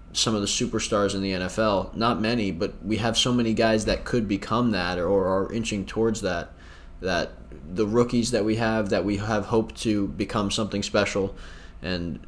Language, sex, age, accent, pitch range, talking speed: English, male, 20-39, American, 100-110 Hz, 190 wpm